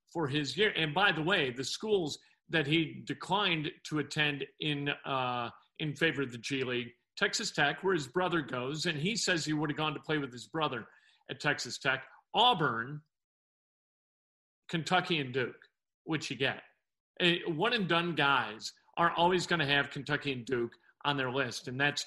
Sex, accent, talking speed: male, American, 185 wpm